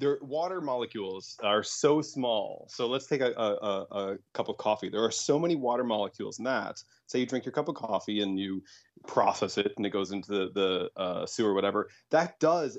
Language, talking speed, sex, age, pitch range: English, 210 wpm, male, 20-39, 105-135 Hz